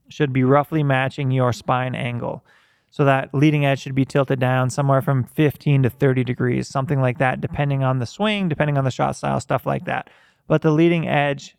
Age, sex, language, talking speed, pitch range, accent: 20-39, male, English, 205 wpm, 130-150 Hz, American